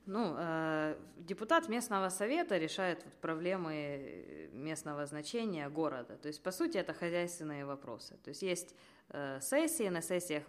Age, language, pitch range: 20-39, Ukrainian, 145-190 Hz